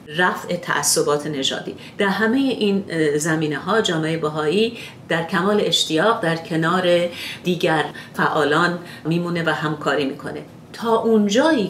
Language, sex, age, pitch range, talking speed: Persian, female, 40-59, 150-205 Hz, 115 wpm